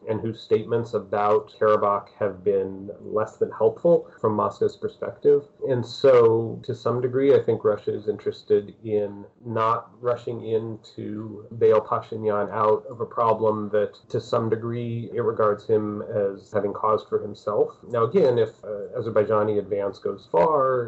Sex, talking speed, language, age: male, 155 wpm, English, 30-49